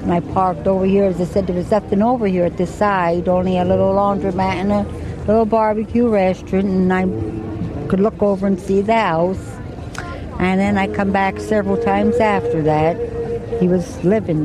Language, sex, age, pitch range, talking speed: English, female, 60-79, 150-210 Hz, 190 wpm